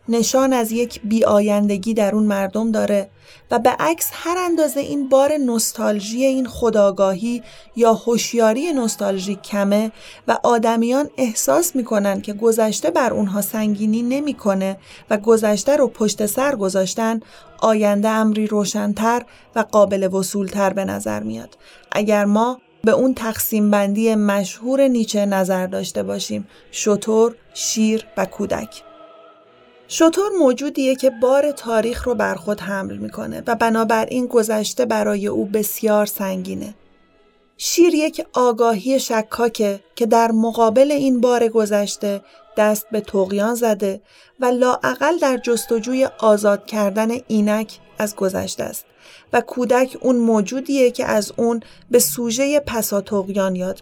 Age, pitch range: 30-49, 205-250 Hz